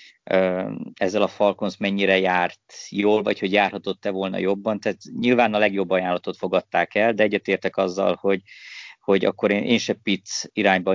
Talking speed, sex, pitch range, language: 160 wpm, male, 95-105 Hz, Hungarian